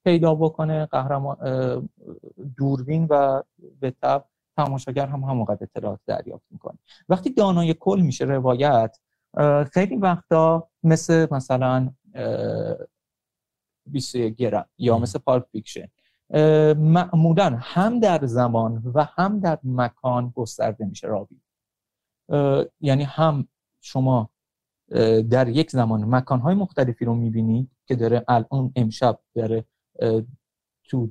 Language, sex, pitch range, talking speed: Persian, male, 115-150 Hz, 105 wpm